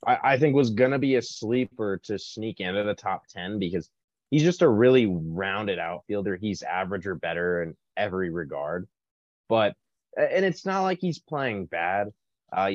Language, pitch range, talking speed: English, 90-120 Hz, 175 wpm